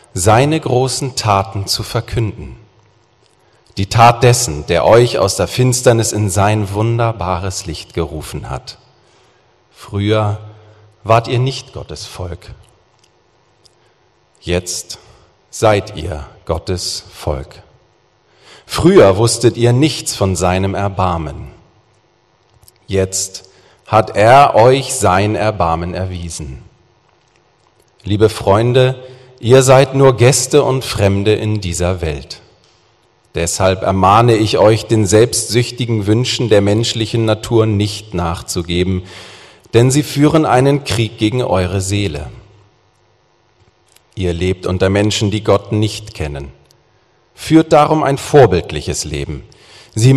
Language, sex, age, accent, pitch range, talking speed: German, male, 40-59, German, 95-120 Hz, 105 wpm